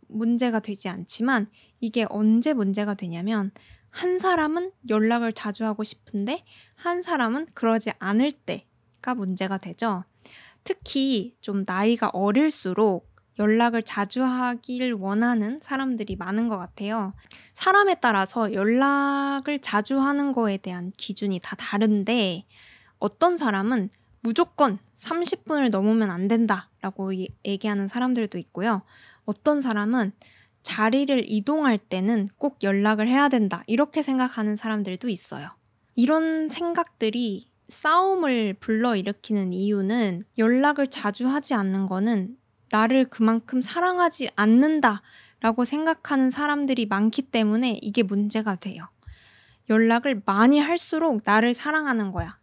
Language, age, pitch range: Korean, 20-39, 205-270 Hz